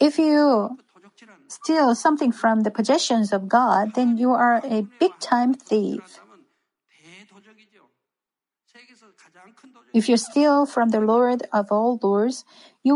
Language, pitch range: Korean, 220-275 Hz